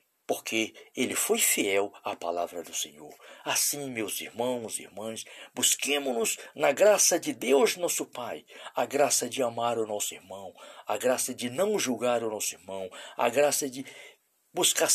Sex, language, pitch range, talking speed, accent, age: male, English, 110-150 Hz, 155 wpm, Brazilian, 50-69